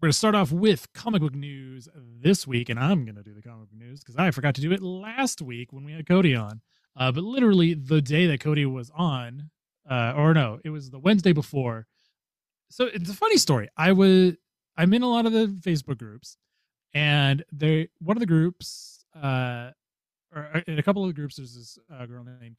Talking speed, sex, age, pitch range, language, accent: 225 wpm, male, 30-49, 125-185 Hz, English, American